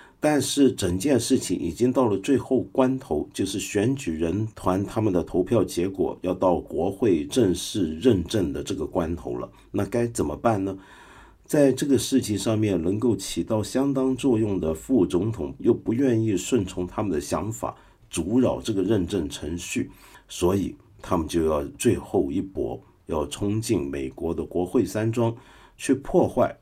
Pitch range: 90-125 Hz